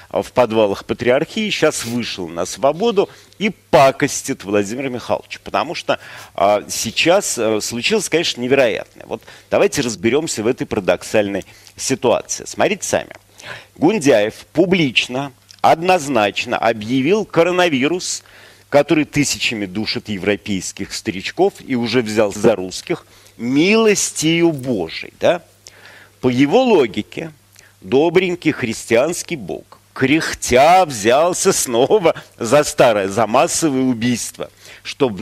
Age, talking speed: 50-69, 105 wpm